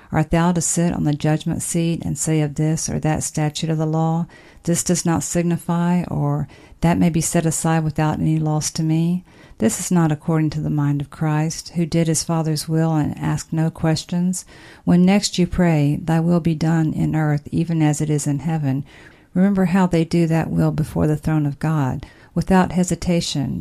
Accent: American